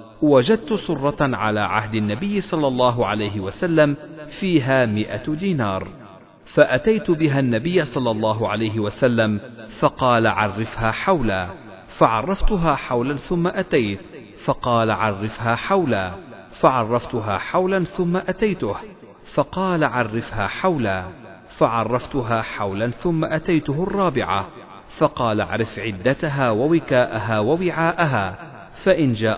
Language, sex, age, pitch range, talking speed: Arabic, male, 50-69, 110-160 Hz, 100 wpm